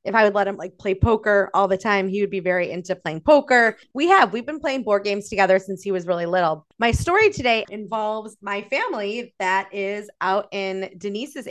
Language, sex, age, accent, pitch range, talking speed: English, female, 20-39, American, 185-215 Hz, 220 wpm